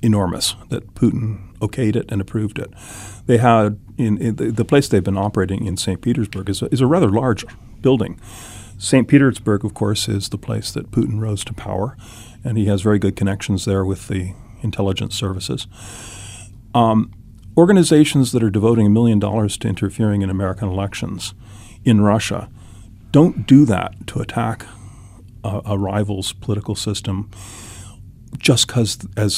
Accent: American